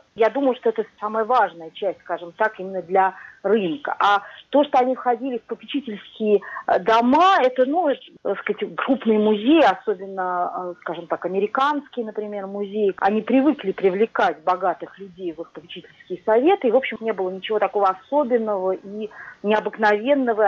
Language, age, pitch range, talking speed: Russian, 40-59, 190-260 Hz, 145 wpm